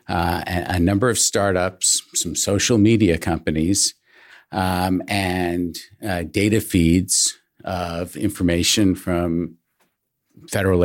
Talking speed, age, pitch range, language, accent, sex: 100 wpm, 50-69, 85-105 Hz, English, American, male